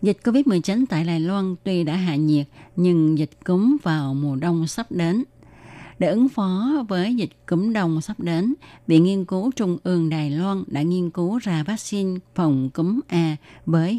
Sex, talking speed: female, 180 wpm